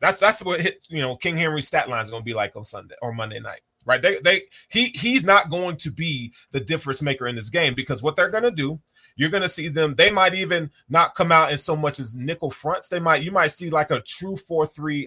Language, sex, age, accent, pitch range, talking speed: English, male, 30-49, American, 125-165 Hz, 270 wpm